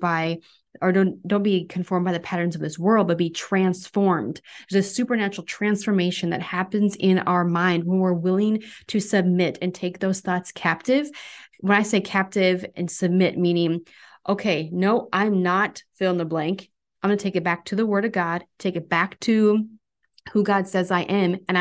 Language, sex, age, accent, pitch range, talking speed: English, female, 30-49, American, 175-195 Hz, 195 wpm